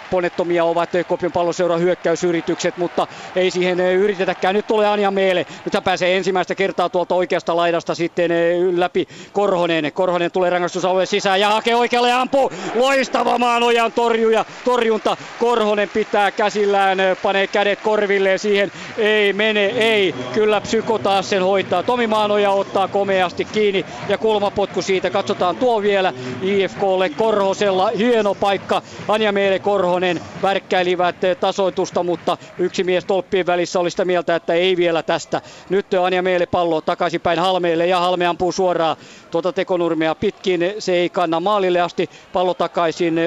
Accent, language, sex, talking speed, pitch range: native, Finnish, male, 140 wpm, 175-205 Hz